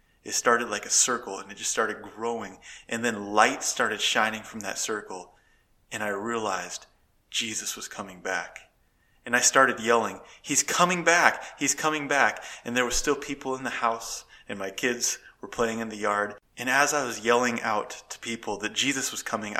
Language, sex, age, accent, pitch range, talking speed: English, male, 20-39, American, 105-130 Hz, 195 wpm